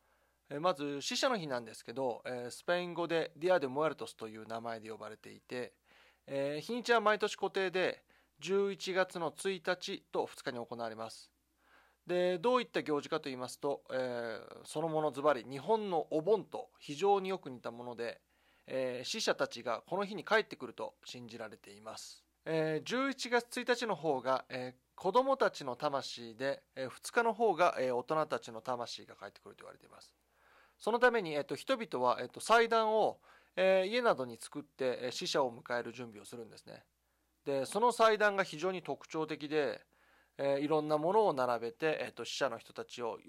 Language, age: Japanese, 20-39